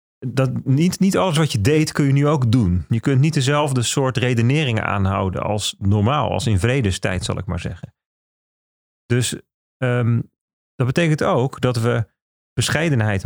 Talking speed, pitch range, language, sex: 155 wpm, 105-140 Hz, Dutch, male